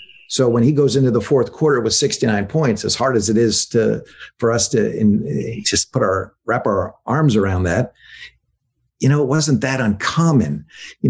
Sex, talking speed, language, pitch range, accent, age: male, 195 wpm, English, 100-125 Hz, American, 50-69